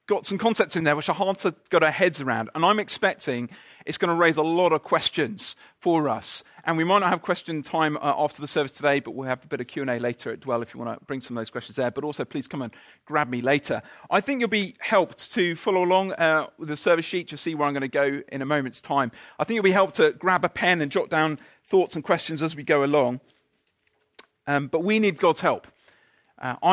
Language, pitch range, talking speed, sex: English, 125-165 Hz, 260 wpm, male